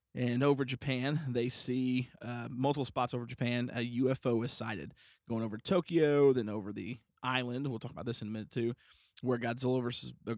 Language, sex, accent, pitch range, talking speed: English, male, American, 115-130 Hz, 190 wpm